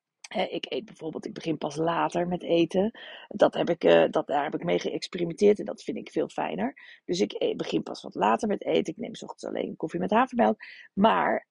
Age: 40-59